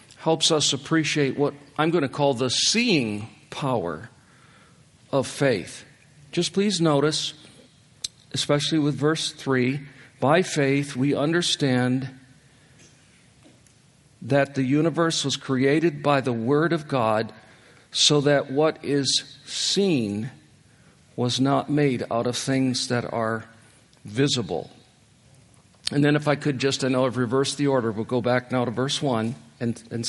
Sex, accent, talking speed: male, American, 140 wpm